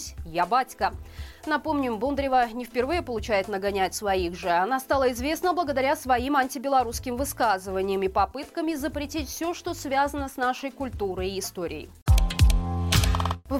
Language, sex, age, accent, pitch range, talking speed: Russian, female, 20-39, native, 200-280 Hz, 130 wpm